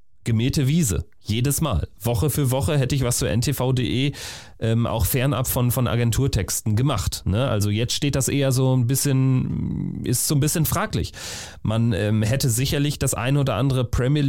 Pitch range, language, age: 105-130 Hz, German, 30-49